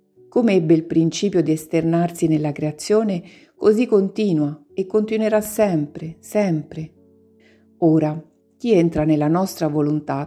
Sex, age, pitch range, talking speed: female, 50-69, 155-190 Hz, 115 wpm